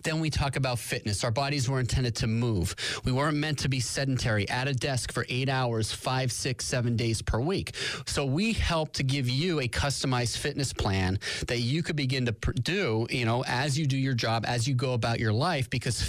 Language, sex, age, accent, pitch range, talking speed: English, male, 30-49, American, 115-145 Hz, 220 wpm